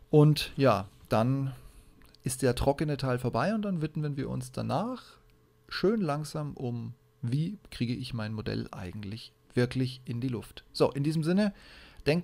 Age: 30-49